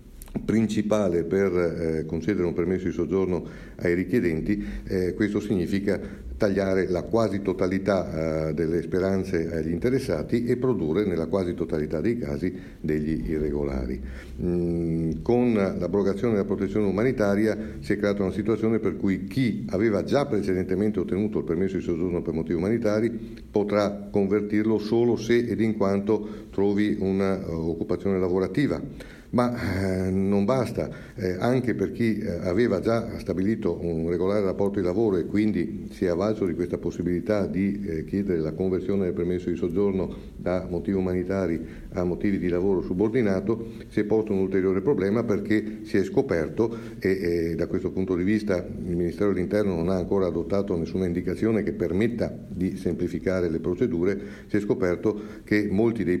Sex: male